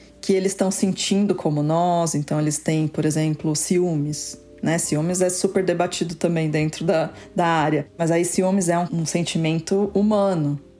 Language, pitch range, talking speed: Portuguese, 160-195 Hz, 165 wpm